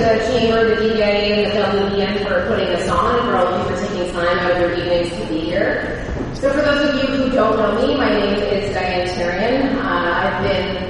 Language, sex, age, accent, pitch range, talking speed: English, female, 30-49, American, 200-245 Hz, 235 wpm